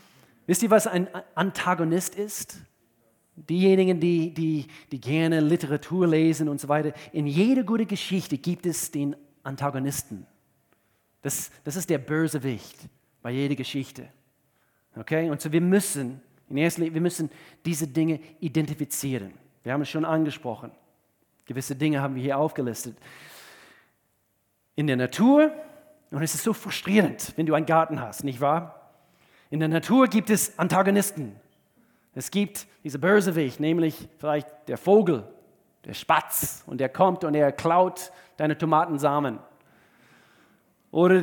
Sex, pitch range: male, 140-180 Hz